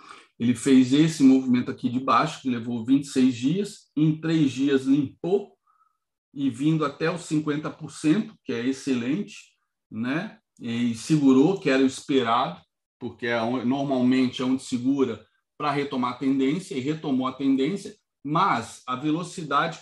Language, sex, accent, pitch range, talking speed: Portuguese, male, Brazilian, 135-165 Hz, 140 wpm